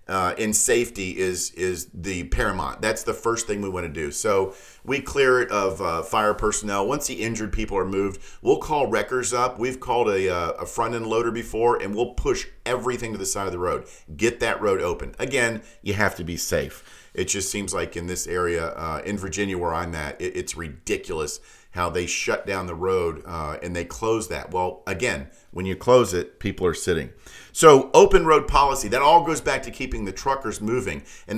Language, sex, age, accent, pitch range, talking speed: English, male, 40-59, American, 95-130 Hz, 210 wpm